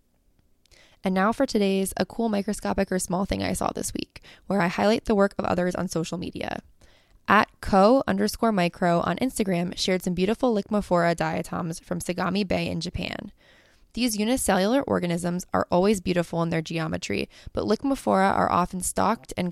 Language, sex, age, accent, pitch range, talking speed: English, female, 20-39, American, 170-210 Hz, 170 wpm